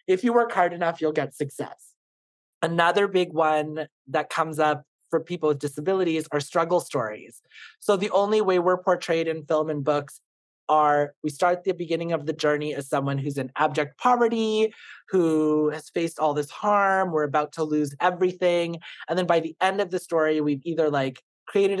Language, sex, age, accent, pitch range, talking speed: English, male, 30-49, American, 150-185 Hz, 190 wpm